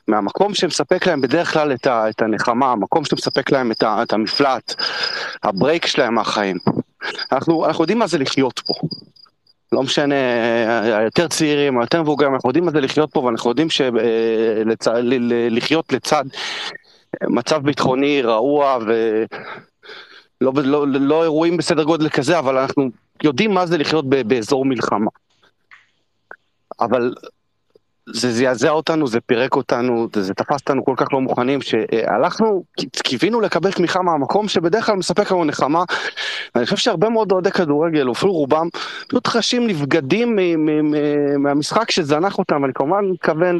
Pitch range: 130-185 Hz